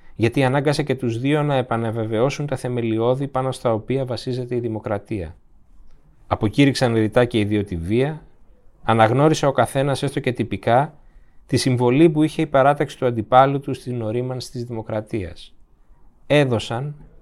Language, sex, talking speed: Greek, male, 140 wpm